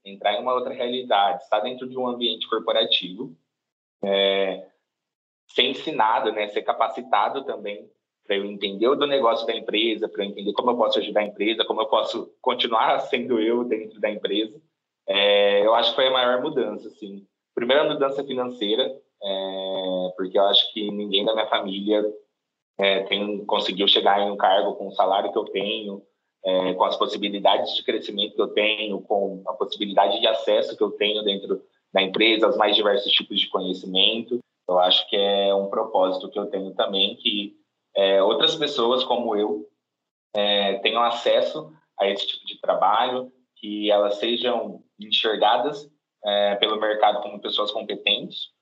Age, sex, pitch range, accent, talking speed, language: 20-39, male, 100-120 Hz, Brazilian, 170 wpm, Portuguese